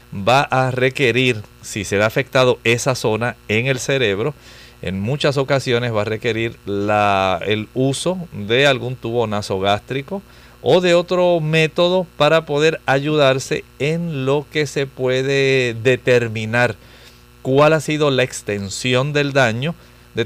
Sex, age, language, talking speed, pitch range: male, 40-59, English, 135 wpm, 110-140 Hz